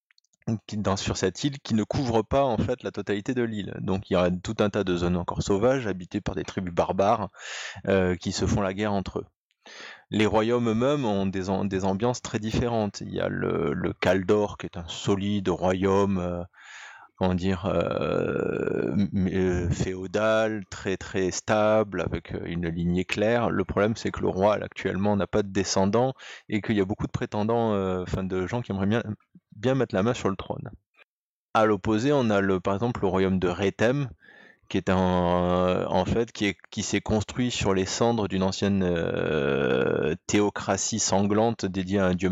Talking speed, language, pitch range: 195 wpm, French, 95-110 Hz